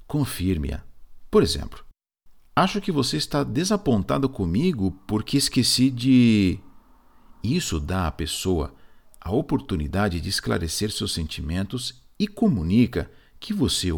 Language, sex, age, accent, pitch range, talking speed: Portuguese, male, 50-69, Brazilian, 85-135 Hz, 110 wpm